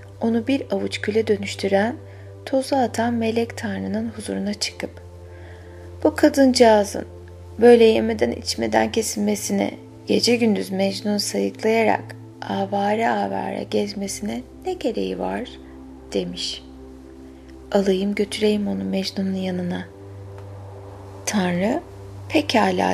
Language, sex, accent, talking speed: Turkish, female, native, 90 wpm